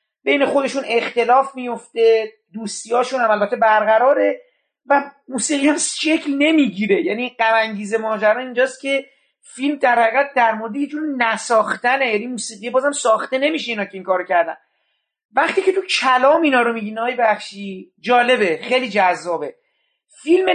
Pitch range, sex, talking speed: 230-295 Hz, male, 135 wpm